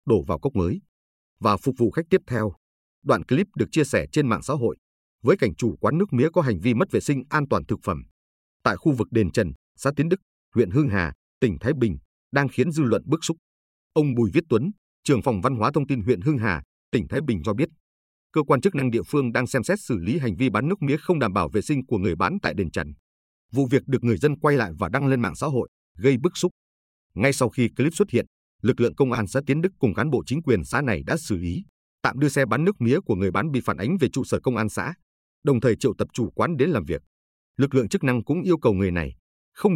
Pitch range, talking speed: 90-140 Hz, 265 wpm